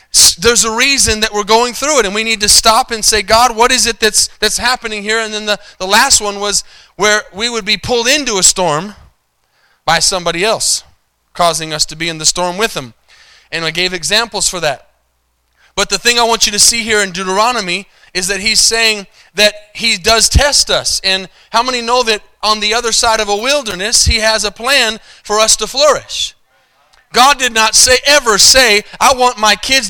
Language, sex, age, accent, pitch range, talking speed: English, male, 30-49, American, 195-230 Hz, 215 wpm